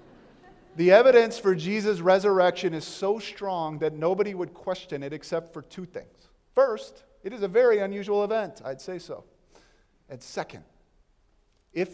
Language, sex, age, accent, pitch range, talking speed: English, male, 40-59, American, 130-190 Hz, 150 wpm